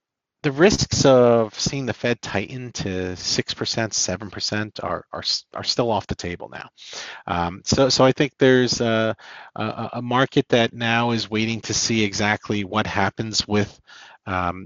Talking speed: 165 wpm